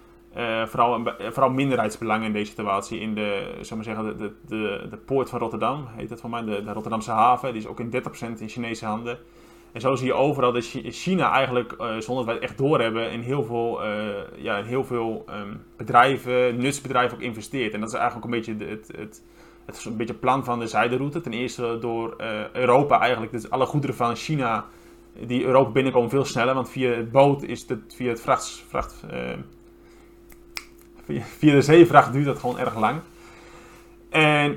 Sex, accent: male, Dutch